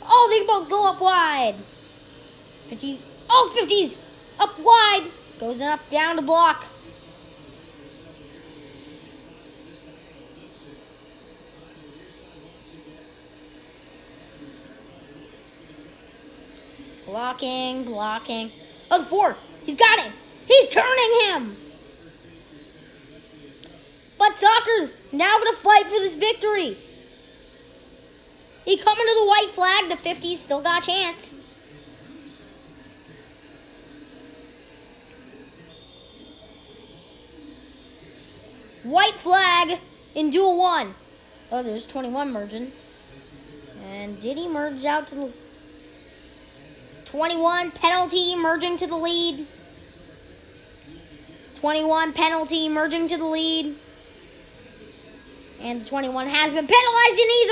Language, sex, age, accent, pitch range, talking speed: English, female, 30-49, American, 240-390 Hz, 85 wpm